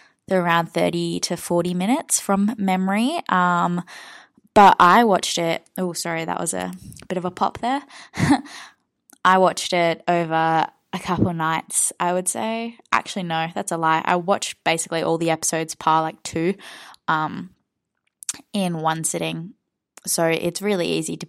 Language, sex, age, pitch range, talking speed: English, female, 10-29, 160-205 Hz, 165 wpm